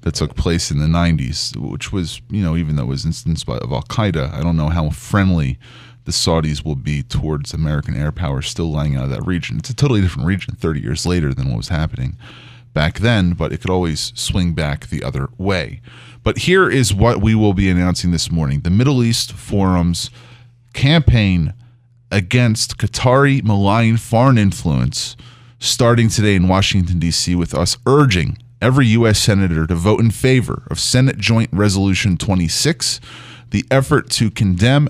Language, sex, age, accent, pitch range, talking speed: English, male, 30-49, American, 90-120 Hz, 175 wpm